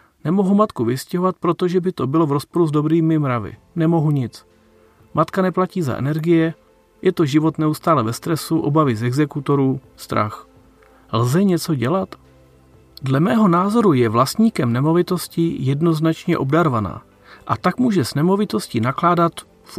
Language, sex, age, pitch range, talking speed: Czech, male, 40-59, 135-185 Hz, 140 wpm